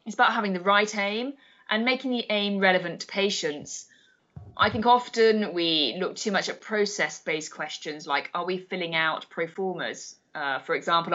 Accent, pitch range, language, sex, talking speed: British, 170-220 Hz, English, female, 170 wpm